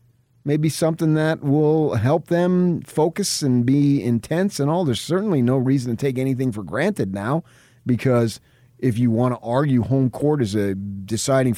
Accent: American